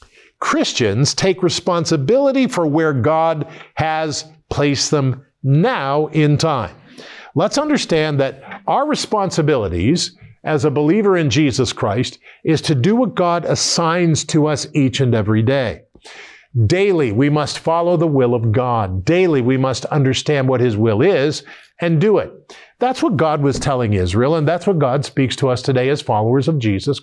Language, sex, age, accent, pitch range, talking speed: English, male, 50-69, American, 130-170 Hz, 160 wpm